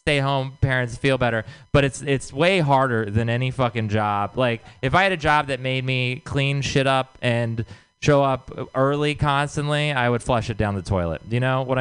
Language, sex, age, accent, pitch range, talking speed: English, male, 20-39, American, 110-150 Hz, 210 wpm